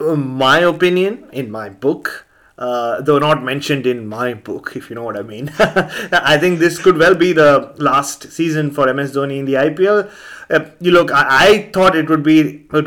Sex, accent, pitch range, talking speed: male, Indian, 135-160 Hz, 200 wpm